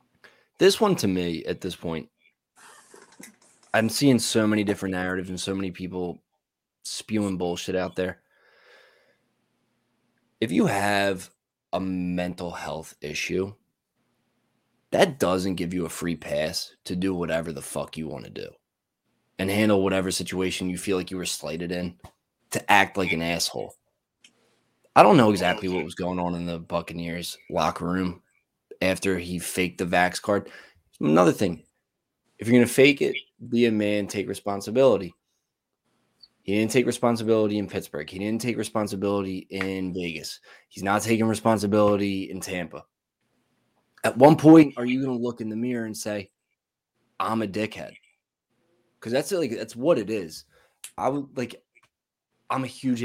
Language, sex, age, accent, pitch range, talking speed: English, male, 20-39, American, 90-110 Hz, 155 wpm